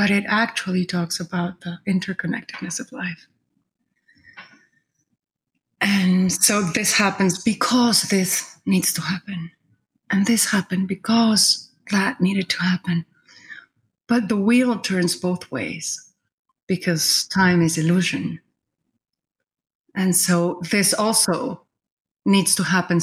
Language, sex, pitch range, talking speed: English, female, 175-215 Hz, 110 wpm